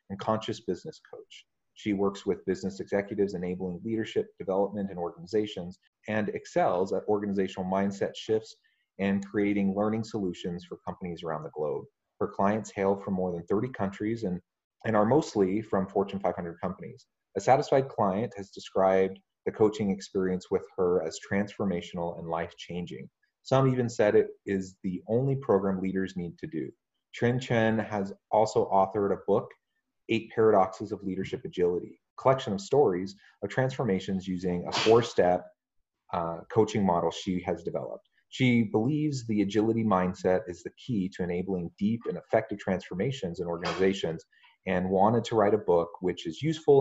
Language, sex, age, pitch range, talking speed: English, male, 30-49, 90-115 Hz, 155 wpm